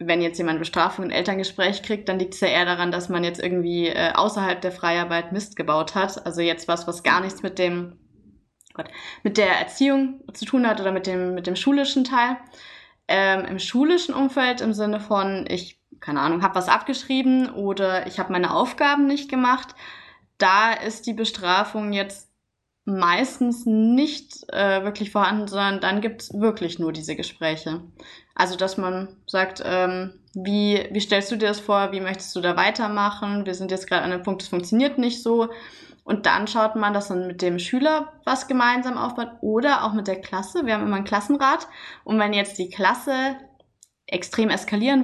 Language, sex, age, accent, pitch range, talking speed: German, female, 20-39, German, 185-225 Hz, 190 wpm